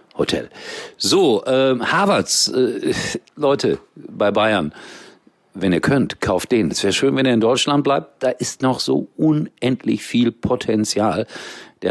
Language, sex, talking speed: German, male, 145 wpm